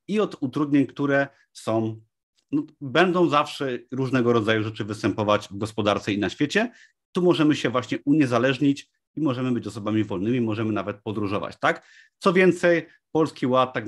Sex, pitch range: male, 110-145 Hz